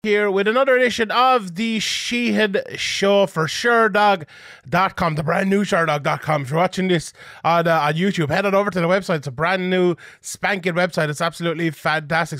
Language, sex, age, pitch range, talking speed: English, male, 20-39, 155-185 Hz, 180 wpm